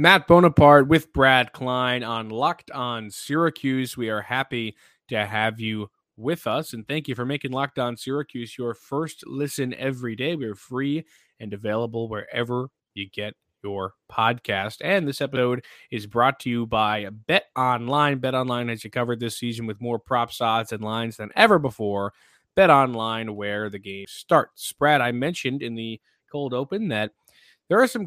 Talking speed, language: 175 wpm, English